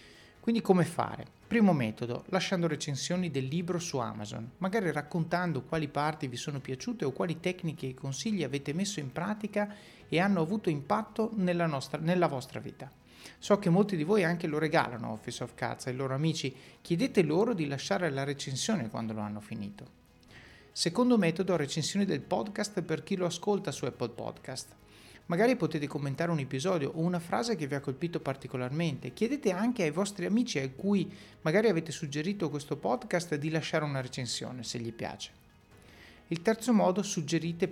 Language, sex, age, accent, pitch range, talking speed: Italian, male, 30-49, native, 135-180 Hz, 170 wpm